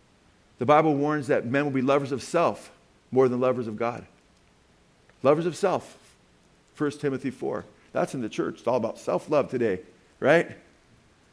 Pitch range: 125-165 Hz